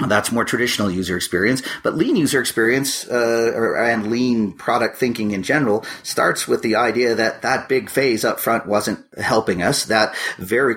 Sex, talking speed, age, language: male, 175 wpm, 40-59, English